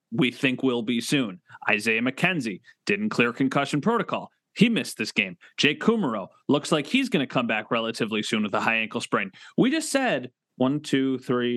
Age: 30-49